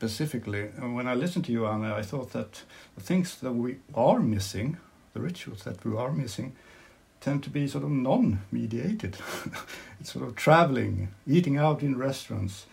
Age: 60-79